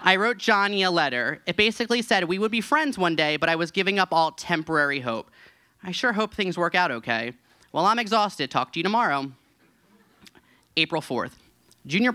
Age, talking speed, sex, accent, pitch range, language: 30-49, 195 wpm, male, American, 145-220 Hz, English